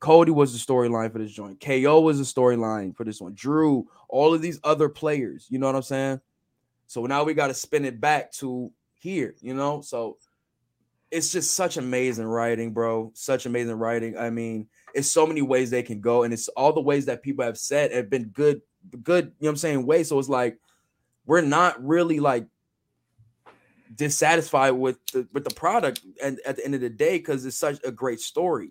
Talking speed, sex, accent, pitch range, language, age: 210 wpm, male, American, 120-150 Hz, English, 10-29